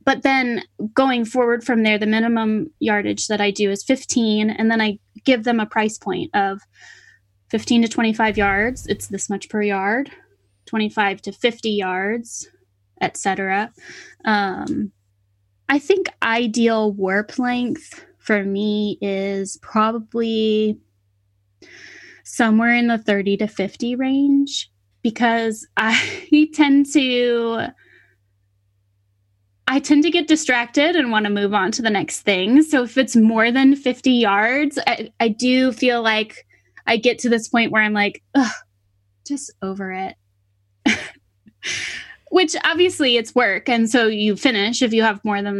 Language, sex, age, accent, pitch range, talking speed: English, female, 10-29, American, 195-240 Hz, 145 wpm